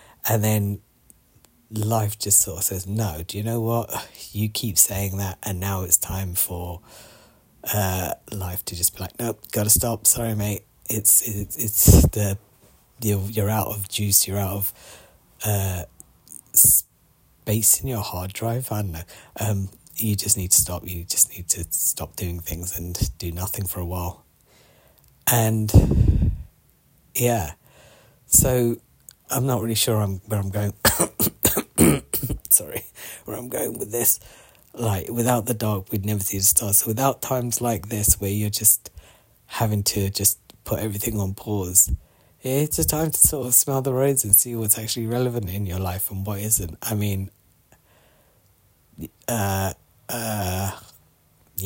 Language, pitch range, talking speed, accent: English, 95-115 Hz, 160 wpm, British